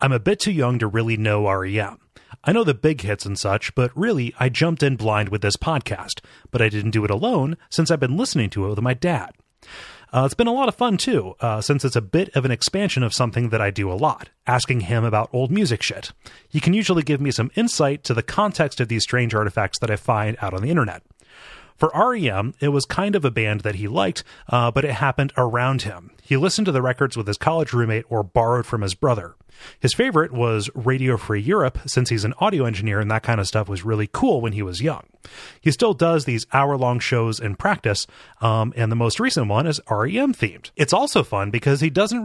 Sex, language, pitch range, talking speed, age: male, English, 110-150 Hz, 235 wpm, 30-49